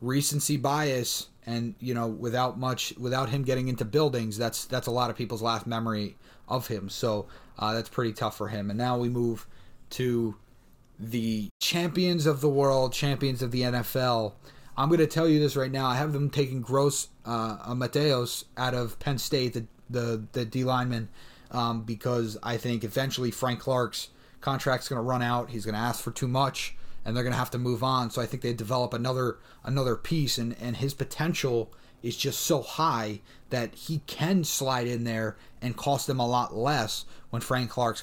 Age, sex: 30-49, male